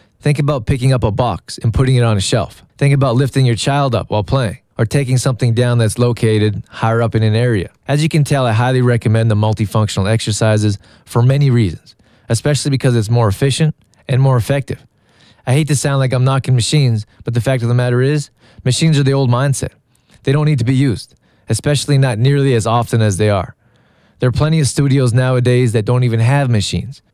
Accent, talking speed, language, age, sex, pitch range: American, 215 wpm, English, 20-39, male, 115-135 Hz